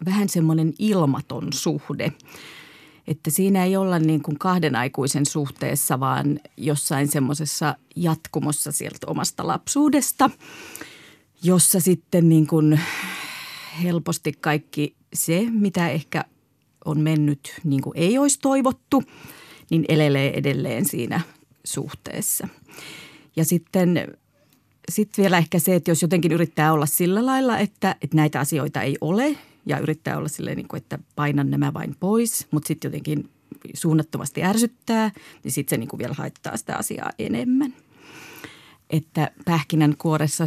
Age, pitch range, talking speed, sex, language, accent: 30-49, 150-185 Hz, 125 wpm, female, Finnish, native